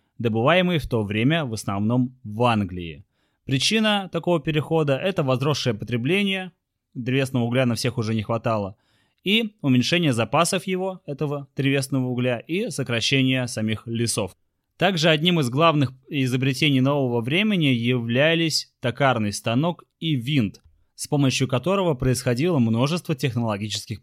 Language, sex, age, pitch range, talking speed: Russian, male, 20-39, 115-155 Hz, 125 wpm